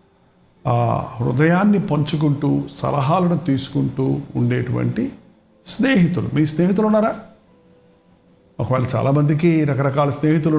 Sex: male